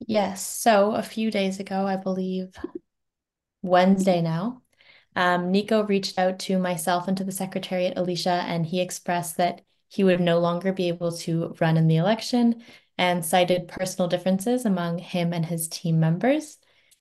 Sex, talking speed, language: female, 160 wpm, English